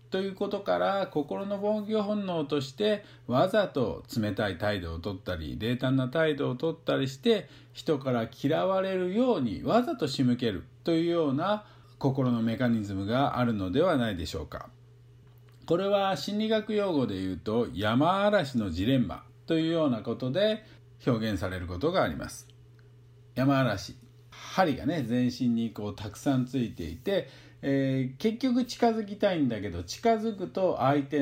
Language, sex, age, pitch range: Japanese, male, 50-69, 120-185 Hz